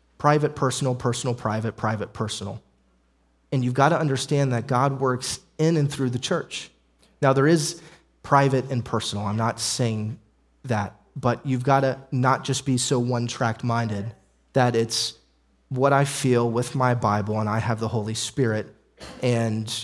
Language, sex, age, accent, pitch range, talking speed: English, male, 30-49, American, 105-135 Hz, 165 wpm